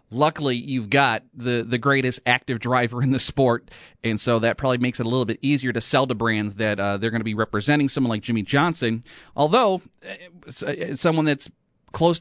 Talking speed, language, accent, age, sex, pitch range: 200 wpm, English, American, 30-49, male, 125-155 Hz